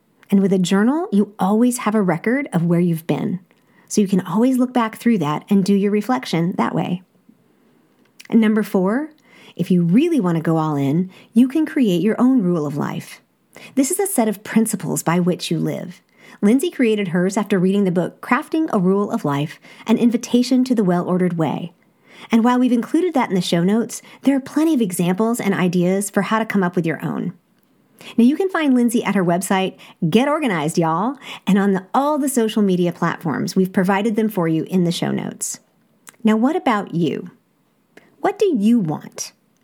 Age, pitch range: 40-59, 185-250 Hz